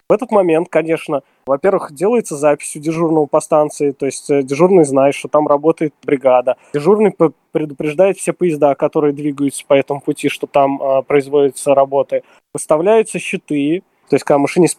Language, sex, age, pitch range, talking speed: Russian, male, 20-39, 135-170 Hz, 160 wpm